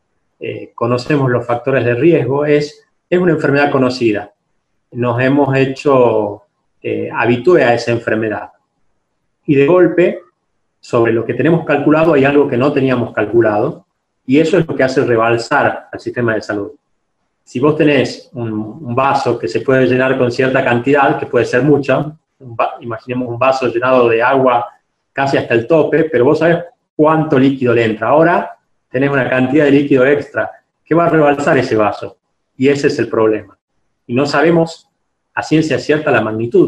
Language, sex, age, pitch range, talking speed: Spanish, male, 30-49, 120-150 Hz, 175 wpm